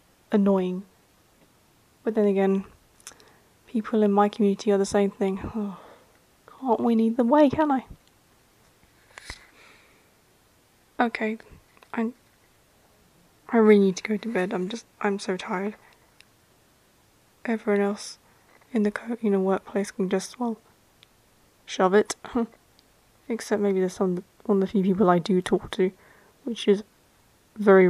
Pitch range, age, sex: 195-225 Hz, 20-39, female